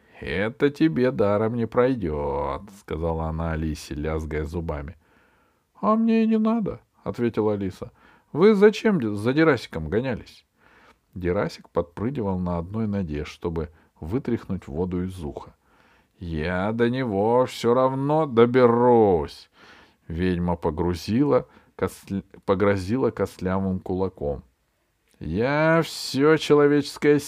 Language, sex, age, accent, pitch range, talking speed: Russian, male, 40-59, native, 95-135 Hz, 120 wpm